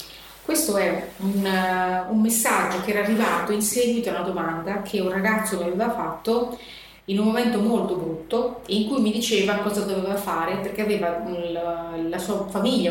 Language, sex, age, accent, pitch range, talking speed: Italian, female, 30-49, native, 180-225 Hz, 165 wpm